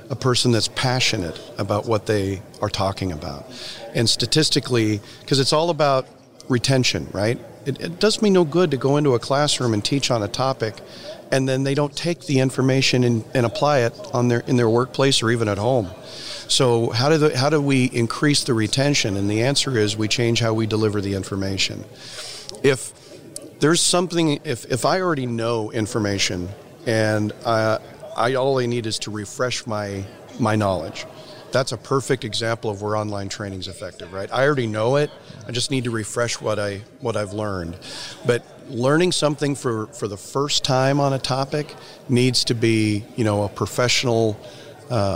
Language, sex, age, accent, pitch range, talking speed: English, male, 40-59, American, 110-135 Hz, 185 wpm